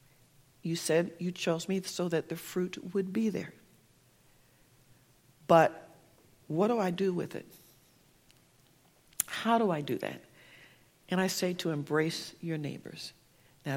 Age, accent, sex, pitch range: 50-69, American, female, 160-205 Hz